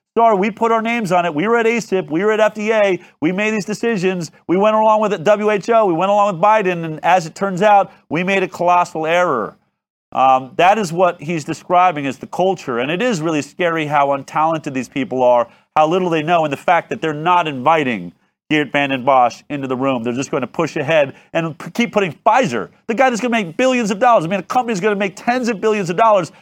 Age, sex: 40-59, male